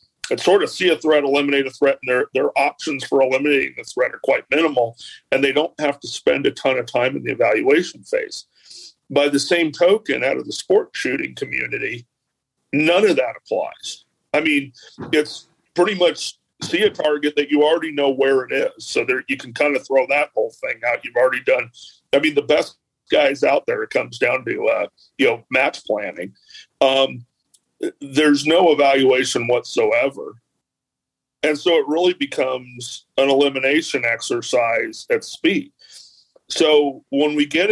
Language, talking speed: English, 180 wpm